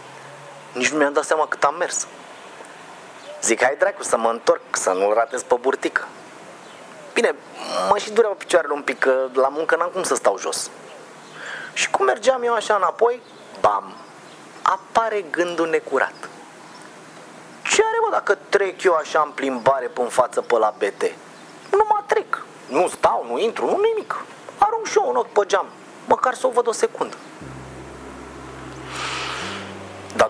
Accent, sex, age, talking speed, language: native, male, 30-49, 160 wpm, Romanian